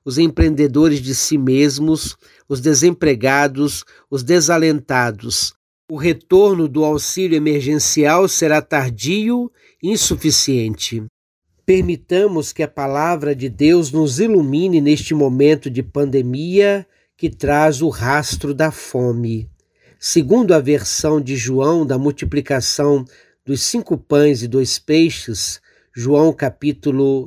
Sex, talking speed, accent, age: male, 110 wpm, Brazilian, 60-79